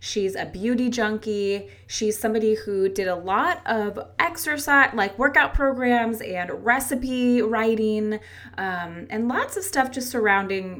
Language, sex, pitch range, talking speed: English, female, 170-230 Hz, 140 wpm